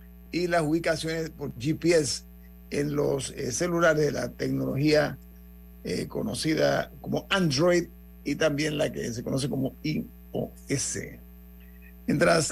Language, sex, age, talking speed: Spanish, male, 50-69, 120 wpm